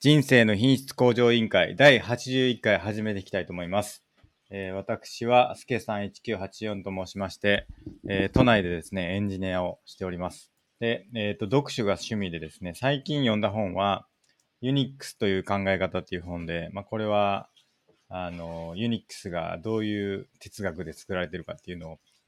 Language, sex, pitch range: Japanese, male, 90-110 Hz